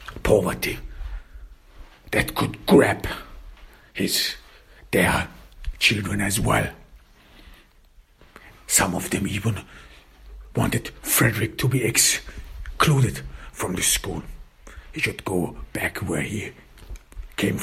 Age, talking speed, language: 60-79, 90 wpm, English